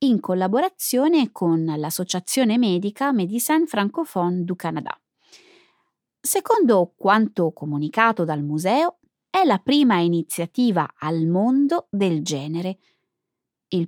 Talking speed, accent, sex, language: 100 wpm, native, female, Italian